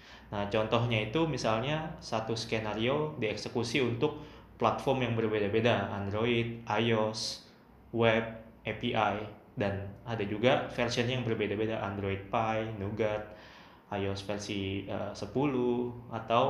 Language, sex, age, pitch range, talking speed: Indonesian, male, 20-39, 105-125 Hz, 105 wpm